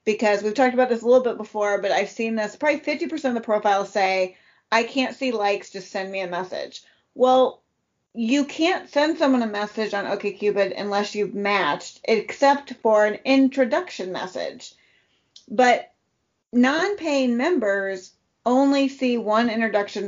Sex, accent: female, American